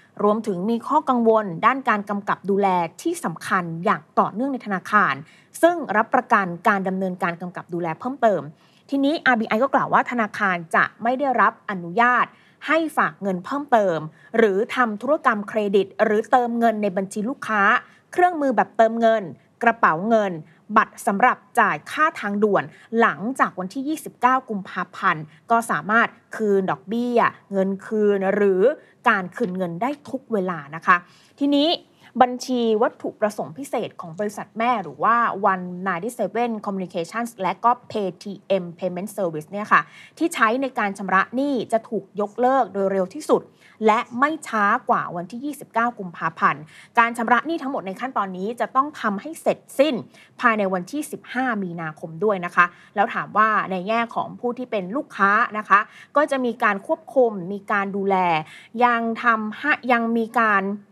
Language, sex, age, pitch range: Thai, female, 20-39, 190-245 Hz